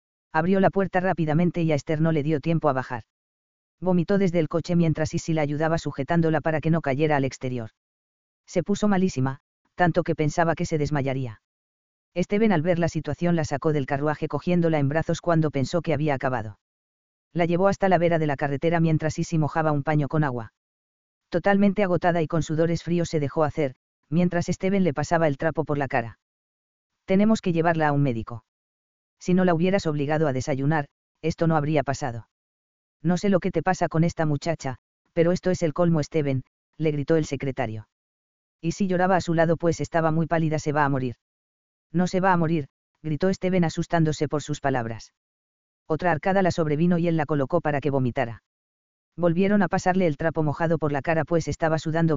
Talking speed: 195 wpm